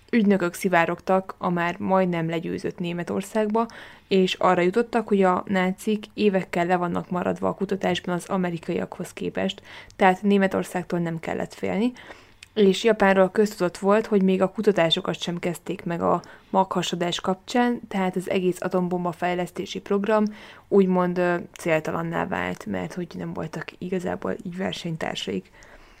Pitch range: 175-200 Hz